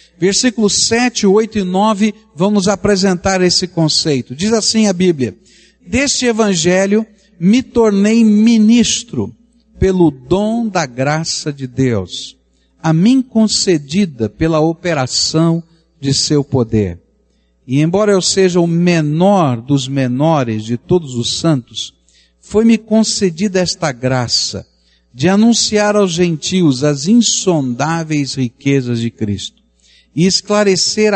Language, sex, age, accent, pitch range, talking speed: Portuguese, male, 60-79, Brazilian, 130-195 Hz, 115 wpm